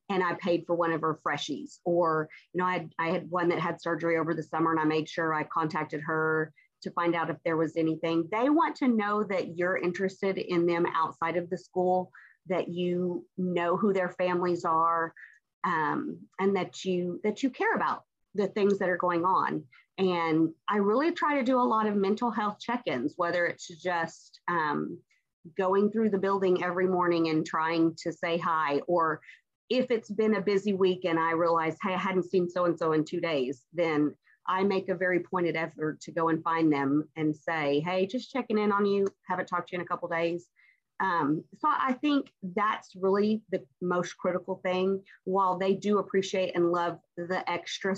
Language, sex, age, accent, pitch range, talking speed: English, female, 40-59, American, 165-190 Hz, 200 wpm